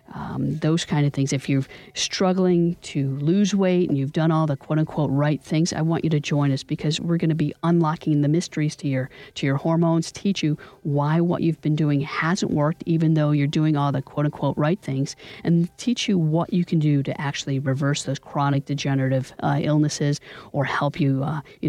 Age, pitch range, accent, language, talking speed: 50-69, 135-165 Hz, American, English, 210 wpm